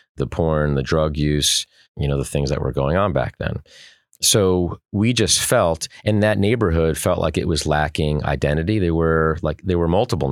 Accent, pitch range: American, 70-85 Hz